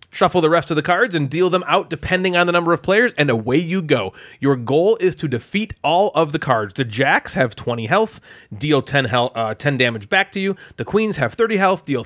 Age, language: 30-49, English